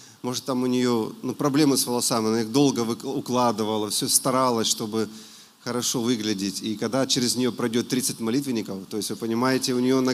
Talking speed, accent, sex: 185 wpm, native, male